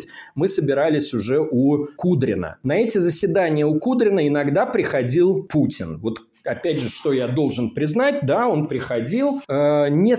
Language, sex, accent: Russian, male, native